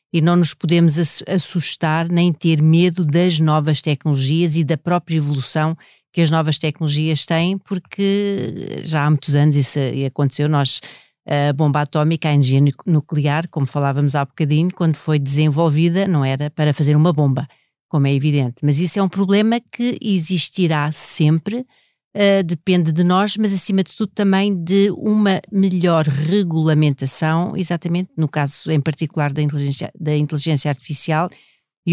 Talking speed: 150 wpm